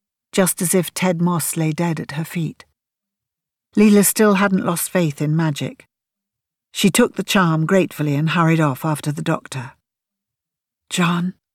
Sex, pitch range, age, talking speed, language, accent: female, 140-175 Hz, 50-69, 150 wpm, English, British